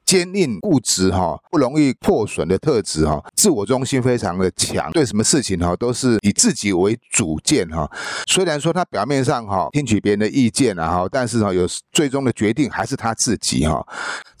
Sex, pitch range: male, 100-140 Hz